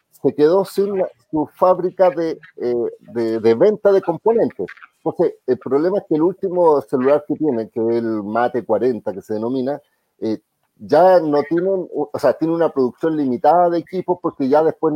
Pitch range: 125-175 Hz